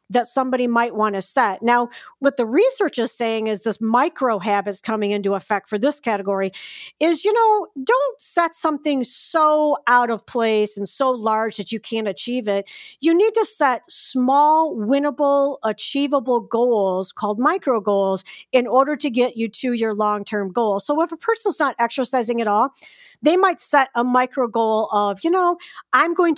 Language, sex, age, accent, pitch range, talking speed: English, female, 40-59, American, 215-285 Hz, 180 wpm